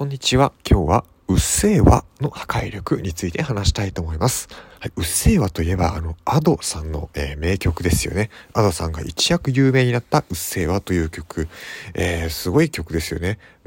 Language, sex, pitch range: Japanese, male, 85-125 Hz